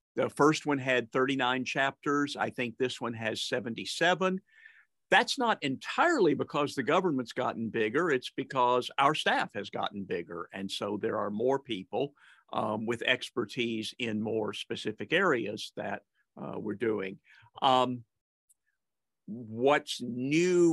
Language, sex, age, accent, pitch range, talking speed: English, male, 50-69, American, 120-155 Hz, 135 wpm